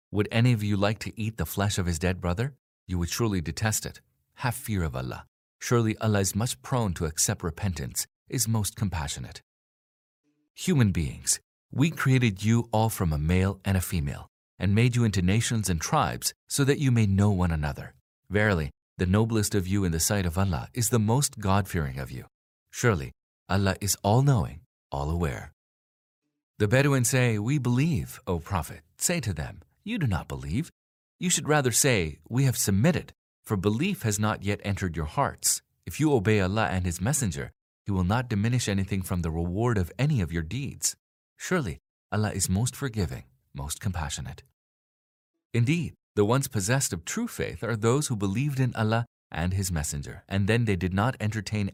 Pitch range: 90-120 Hz